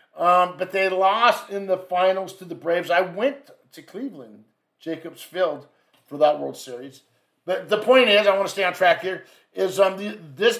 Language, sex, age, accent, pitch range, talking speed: English, male, 50-69, American, 170-205 Hz, 195 wpm